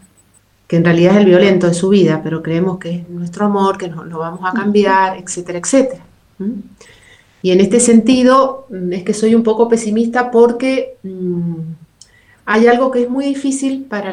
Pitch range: 180-235 Hz